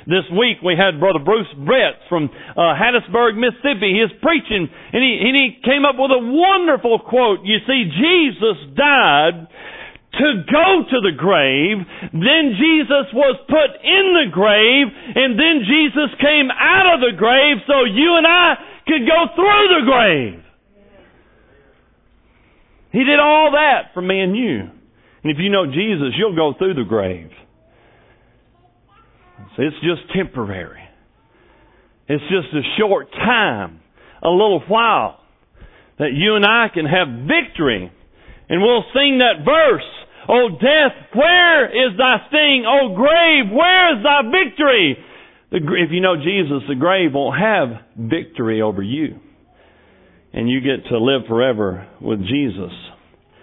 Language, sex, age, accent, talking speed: English, male, 50-69, American, 145 wpm